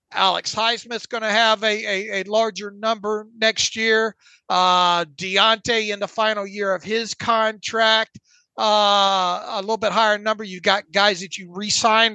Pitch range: 200-225 Hz